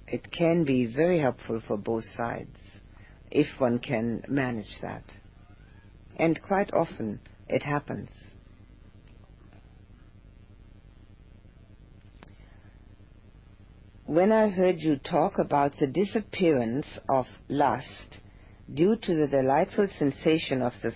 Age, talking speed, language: 50-69, 100 wpm, English